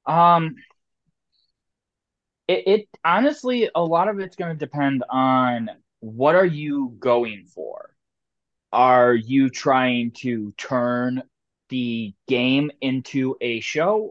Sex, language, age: male, English, 20-39